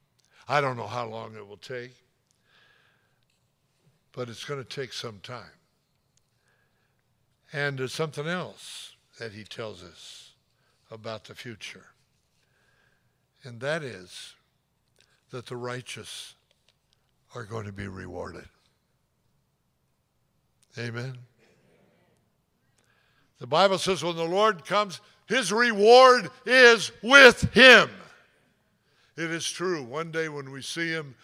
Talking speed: 115 wpm